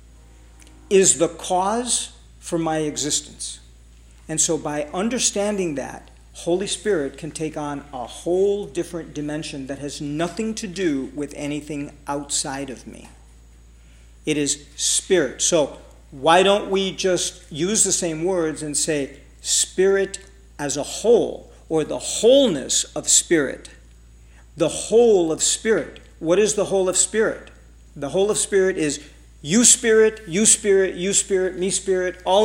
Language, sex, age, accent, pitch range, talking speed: English, male, 50-69, American, 145-195 Hz, 140 wpm